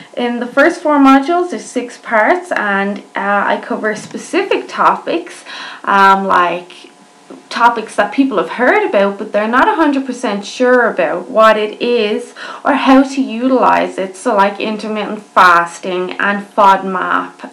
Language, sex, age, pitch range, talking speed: English, female, 20-39, 195-260 Hz, 145 wpm